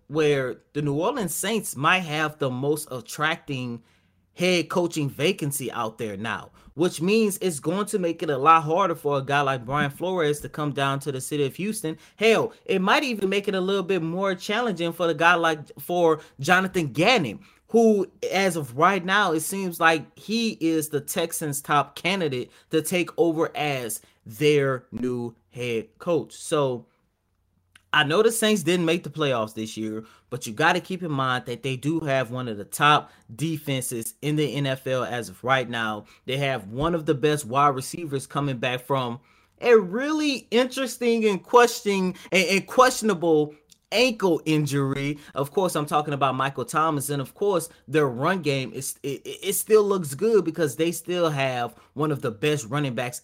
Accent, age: American, 20-39